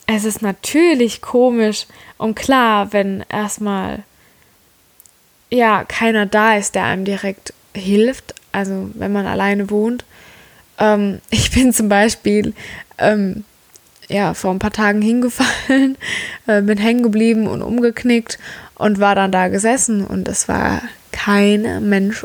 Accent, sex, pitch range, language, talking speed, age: German, female, 200-230 Hz, German, 130 wpm, 20-39